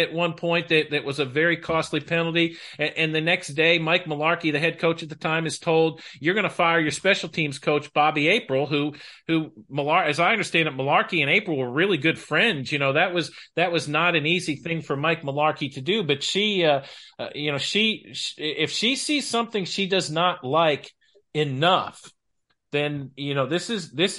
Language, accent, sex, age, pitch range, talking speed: English, American, male, 40-59, 145-175 Hz, 215 wpm